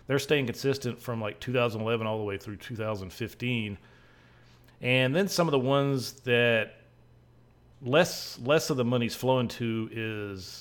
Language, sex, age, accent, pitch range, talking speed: English, male, 40-59, American, 105-125 Hz, 145 wpm